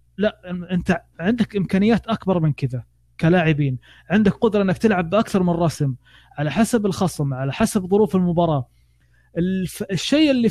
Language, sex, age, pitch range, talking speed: Arabic, male, 20-39, 150-195 Hz, 145 wpm